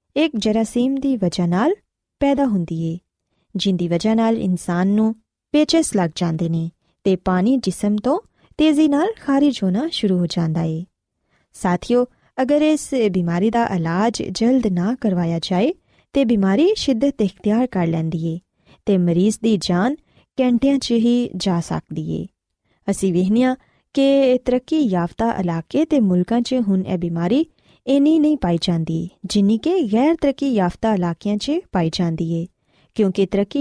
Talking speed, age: 130 wpm, 20-39